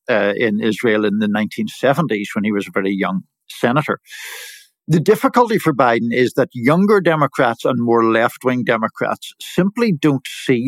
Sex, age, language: male, 60-79, English